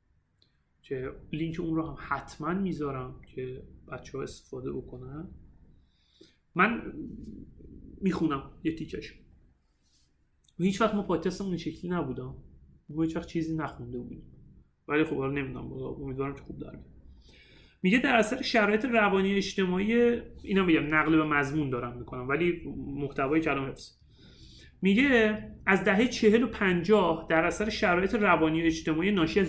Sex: male